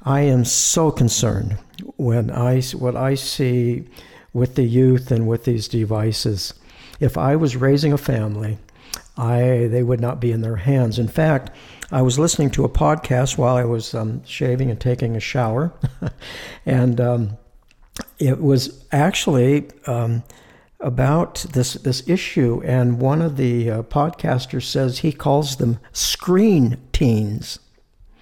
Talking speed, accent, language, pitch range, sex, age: 145 wpm, American, English, 120-145 Hz, male, 60-79